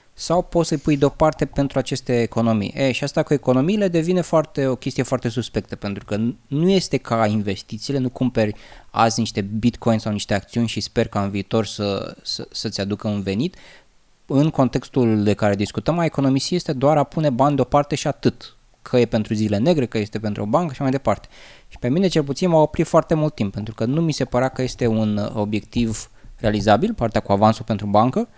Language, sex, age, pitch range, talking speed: Romanian, male, 20-39, 110-140 Hz, 210 wpm